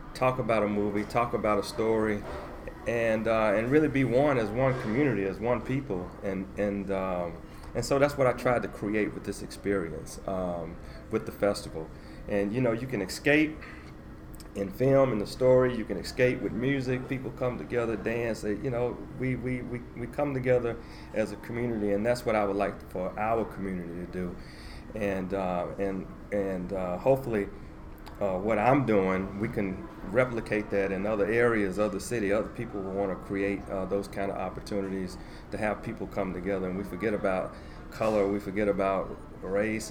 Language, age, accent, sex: English, 40-59, American, male